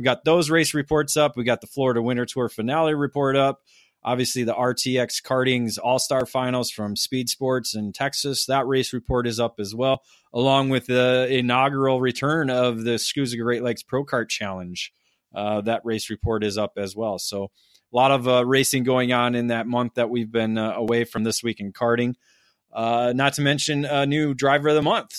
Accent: American